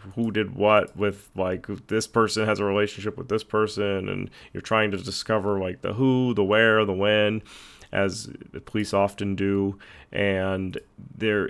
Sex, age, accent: male, 30-49, American